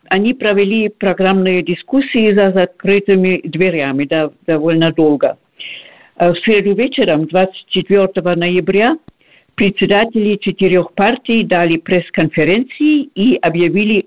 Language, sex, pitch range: Russian, female, 170-210 Hz